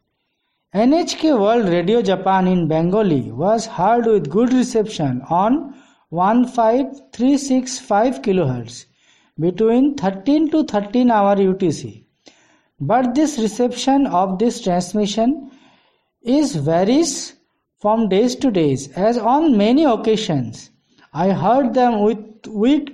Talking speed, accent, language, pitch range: 105 wpm, Indian, English, 195-265 Hz